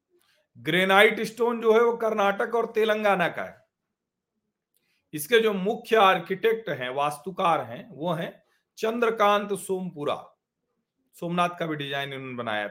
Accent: native